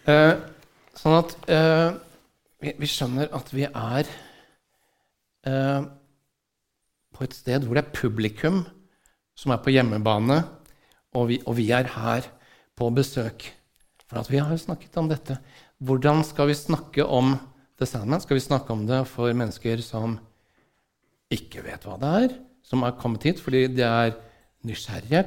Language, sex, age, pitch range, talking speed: English, male, 50-69, 125-155 Hz, 170 wpm